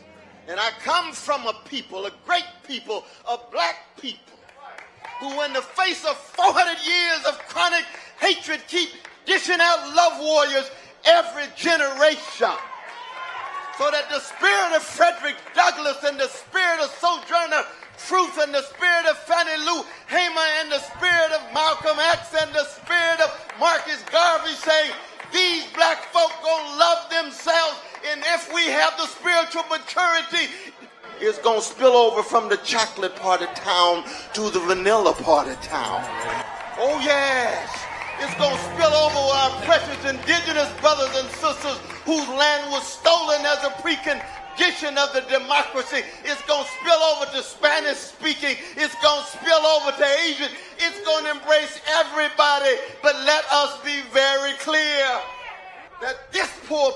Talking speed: 150 wpm